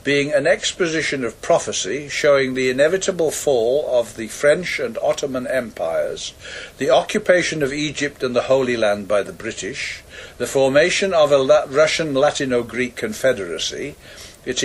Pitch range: 120-150 Hz